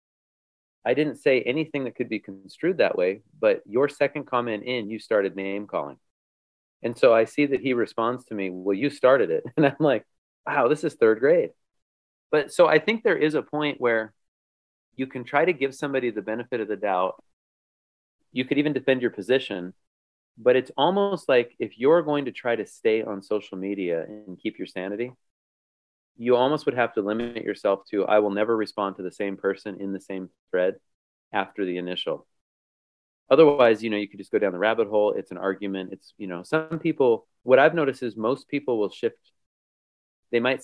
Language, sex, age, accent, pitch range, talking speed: English, male, 30-49, American, 95-130 Hz, 200 wpm